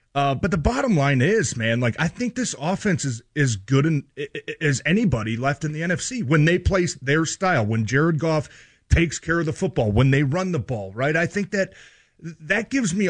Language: English